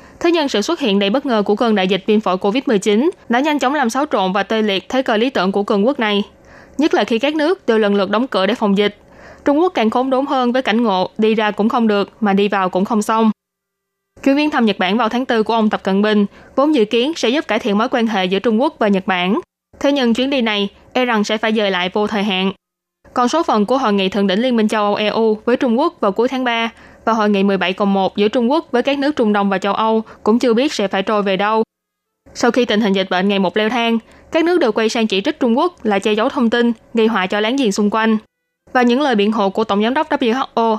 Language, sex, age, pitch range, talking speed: Vietnamese, female, 20-39, 205-250 Hz, 280 wpm